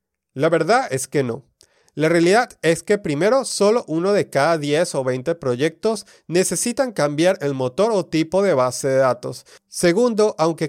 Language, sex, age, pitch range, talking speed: Spanish, male, 30-49, 140-195 Hz, 170 wpm